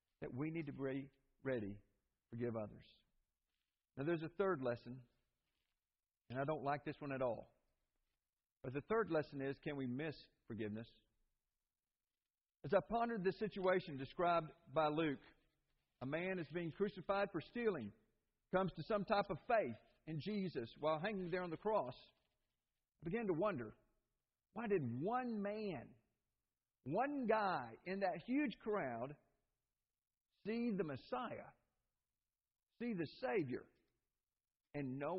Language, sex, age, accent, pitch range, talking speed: English, male, 50-69, American, 135-210 Hz, 140 wpm